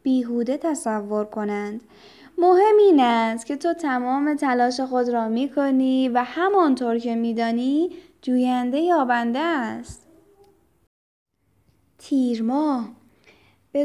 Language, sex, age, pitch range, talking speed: Persian, female, 10-29, 235-305 Hz, 105 wpm